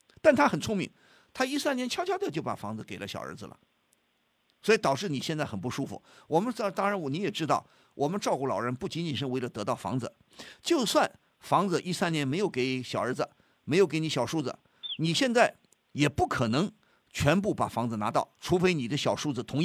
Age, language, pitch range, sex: 50-69, Chinese, 160-255 Hz, male